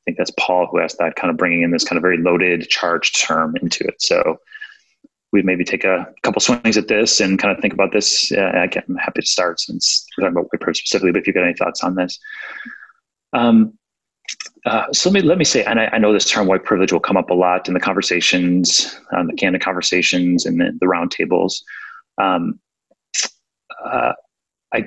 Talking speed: 220 wpm